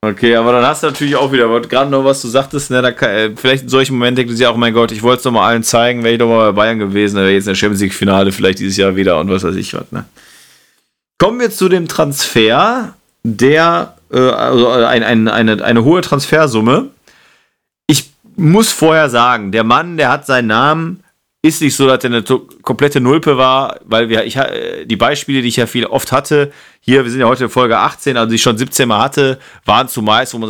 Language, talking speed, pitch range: German, 240 wpm, 115-140 Hz